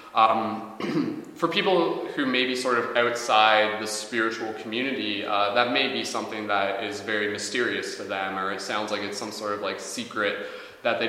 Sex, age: male, 20-39